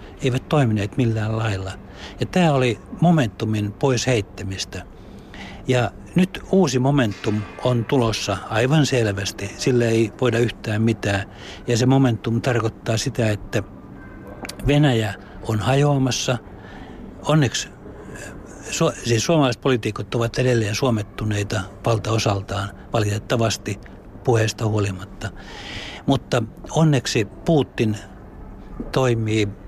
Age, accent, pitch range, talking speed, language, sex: 60-79, native, 100-125 Hz, 95 wpm, Finnish, male